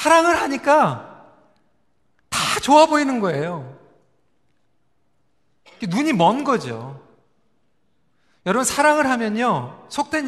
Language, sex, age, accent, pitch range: Korean, male, 40-59, native, 215-285 Hz